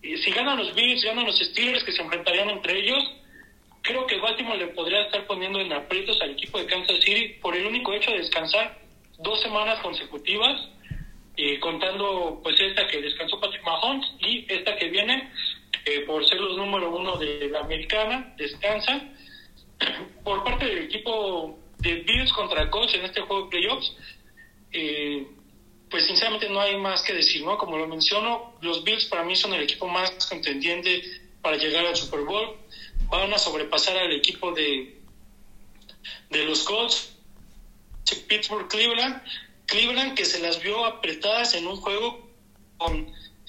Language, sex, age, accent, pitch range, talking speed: Spanish, male, 40-59, Mexican, 170-225 Hz, 160 wpm